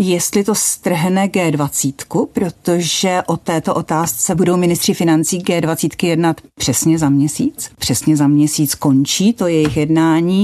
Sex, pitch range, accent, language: female, 160-205 Hz, native, Czech